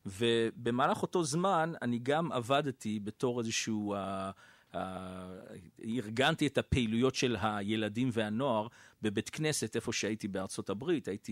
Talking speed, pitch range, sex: 120 wpm, 105-150 Hz, male